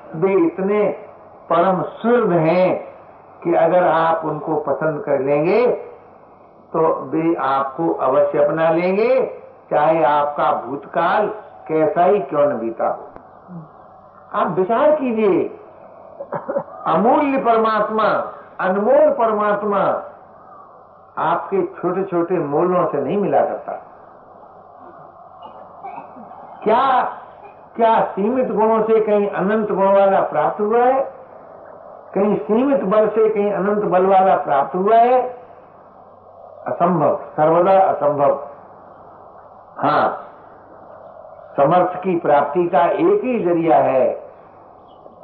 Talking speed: 100 wpm